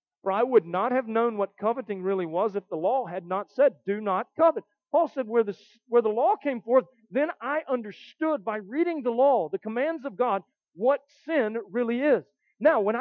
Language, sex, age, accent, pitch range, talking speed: English, male, 40-59, American, 165-245 Hz, 205 wpm